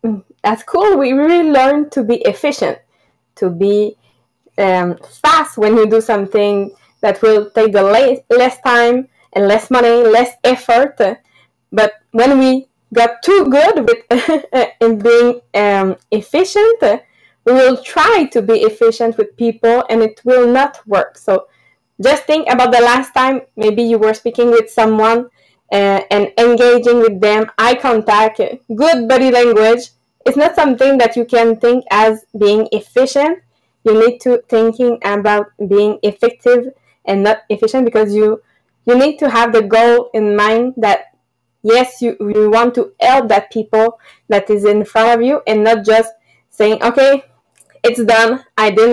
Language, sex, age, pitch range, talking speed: English, female, 20-39, 215-255 Hz, 155 wpm